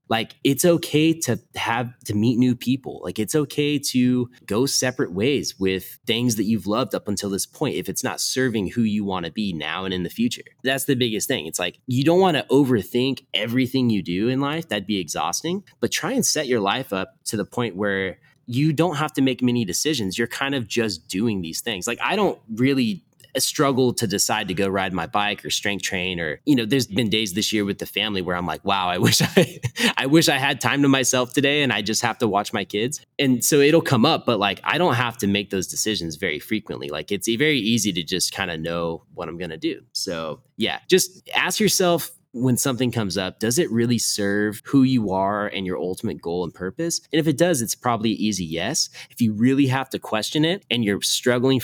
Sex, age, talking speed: male, 20-39, 235 wpm